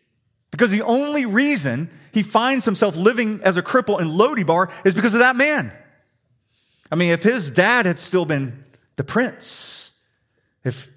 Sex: male